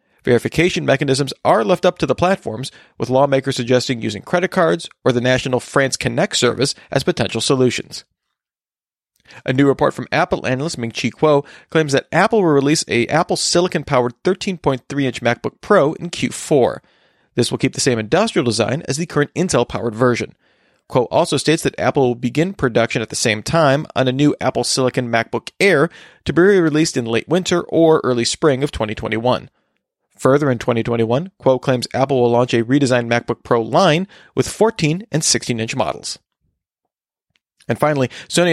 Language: English